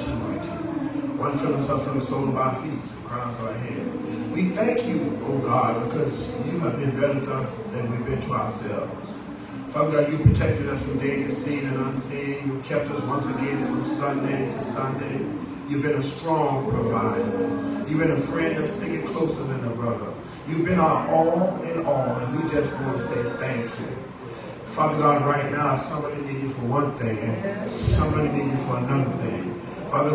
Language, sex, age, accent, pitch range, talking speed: English, male, 40-59, American, 135-165 Hz, 195 wpm